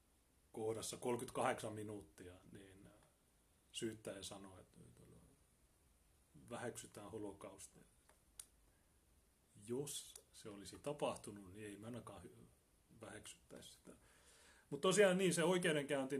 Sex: male